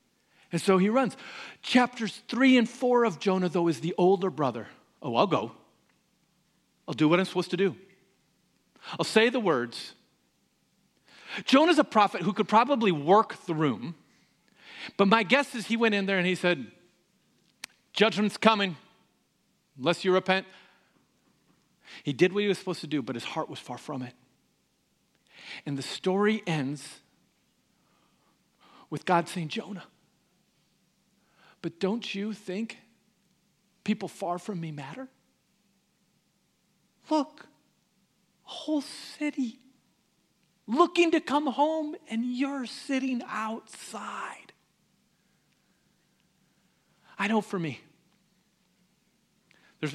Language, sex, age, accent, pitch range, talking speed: English, male, 50-69, American, 170-225 Hz, 125 wpm